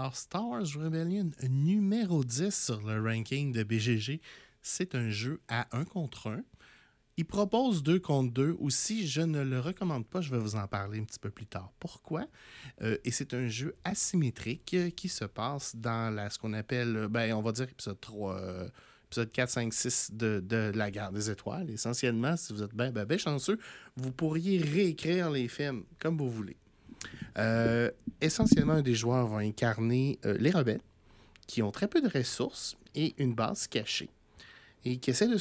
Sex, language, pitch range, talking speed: male, French, 115-160 Hz, 190 wpm